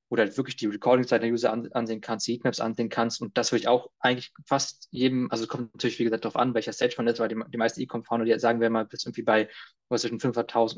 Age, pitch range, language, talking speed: 20-39, 115-130 Hz, German, 260 wpm